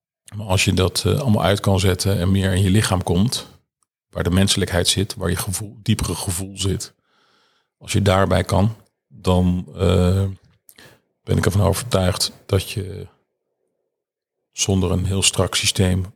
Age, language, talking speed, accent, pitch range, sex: 40-59, Dutch, 150 wpm, Dutch, 95-110 Hz, male